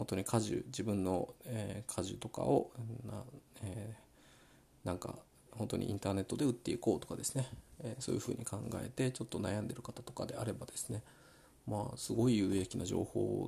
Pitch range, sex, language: 105-125 Hz, male, Japanese